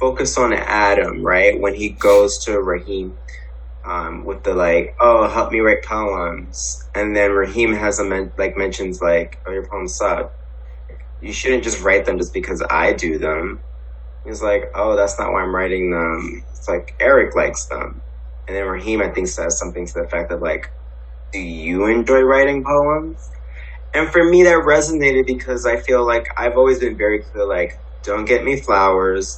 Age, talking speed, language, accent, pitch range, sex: 20-39, 185 wpm, English, American, 85-130 Hz, male